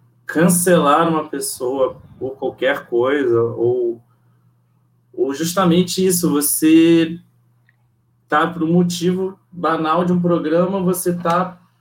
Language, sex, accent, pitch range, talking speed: Portuguese, male, Brazilian, 125-180 Hz, 110 wpm